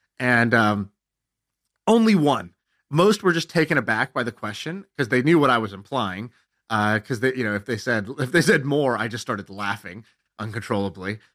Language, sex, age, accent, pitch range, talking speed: English, male, 30-49, American, 110-150 Hz, 185 wpm